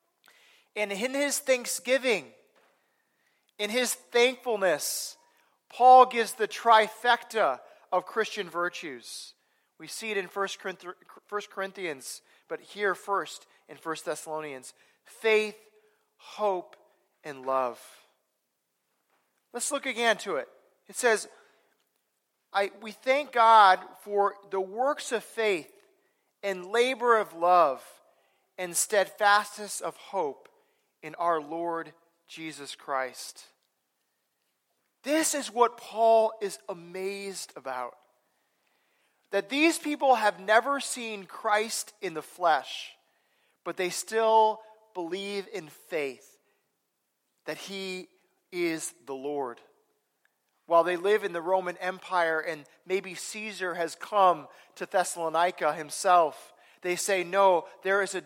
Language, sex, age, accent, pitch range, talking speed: English, male, 40-59, American, 175-230 Hz, 110 wpm